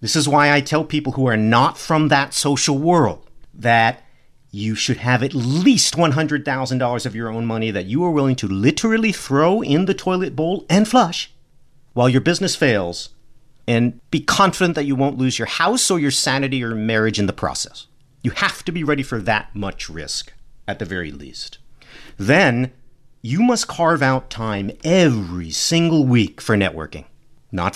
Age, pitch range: 50-69, 115-155 Hz